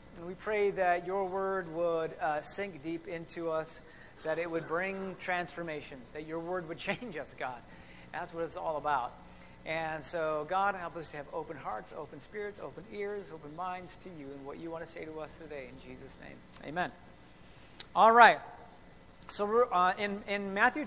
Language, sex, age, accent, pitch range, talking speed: English, male, 40-59, American, 155-220 Hz, 195 wpm